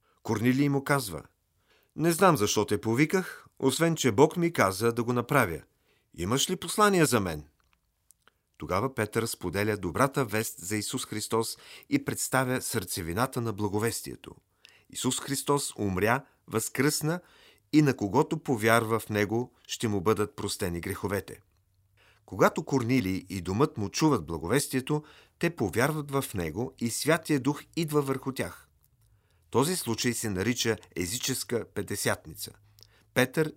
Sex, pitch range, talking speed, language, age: male, 105-145 Hz, 130 wpm, Bulgarian, 40-59